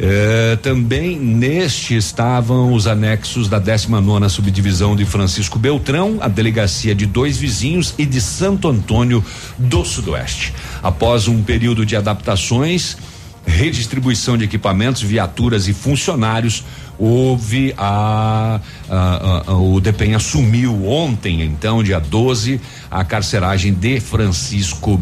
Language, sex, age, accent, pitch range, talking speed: Portuguese, male, 60-79, Brazilian, 95-120 Hz, 120 wpm